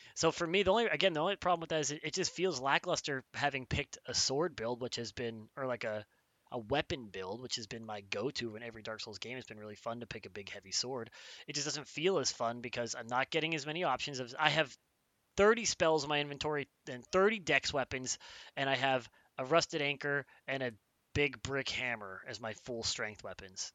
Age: 20-39